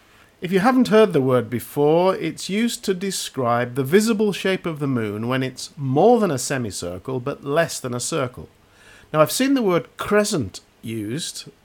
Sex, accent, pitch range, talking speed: male, British, 110-170 Hz, 180 wpm